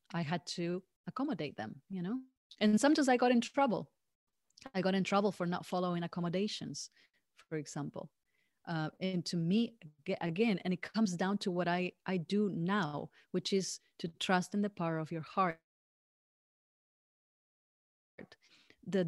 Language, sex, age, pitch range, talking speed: English, female, 30-49, 170-215 Hz, 155 wpm